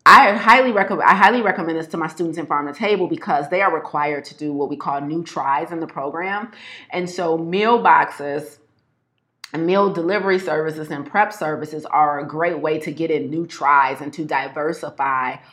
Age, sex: 30-49, female